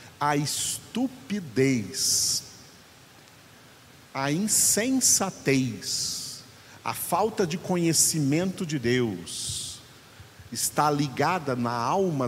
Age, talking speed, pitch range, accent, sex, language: 50-69, 70 wpm, 125-180 Hz, Brazilian, male, Portuguese